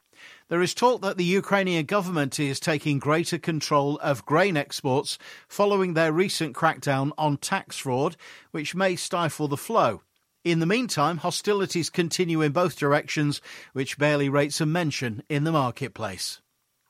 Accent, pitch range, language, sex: British, 140-170 Hz, English, male